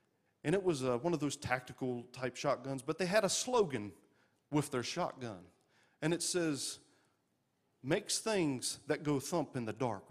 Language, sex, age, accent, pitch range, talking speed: English, male, 40-59, American, 125-180 Hz, 170 wpm